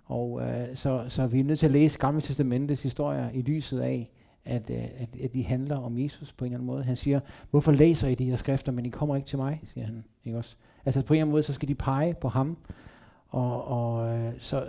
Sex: male